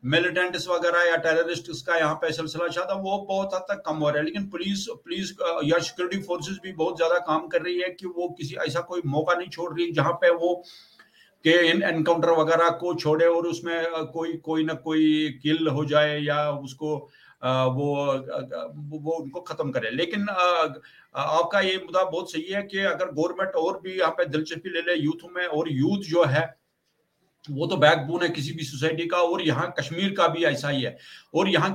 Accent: native